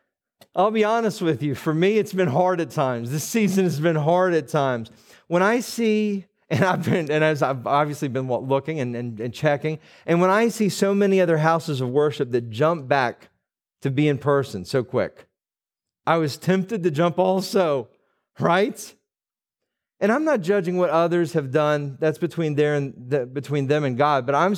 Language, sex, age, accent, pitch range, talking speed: English, male, 40-59, American, 150-195 Hz, 195 wpm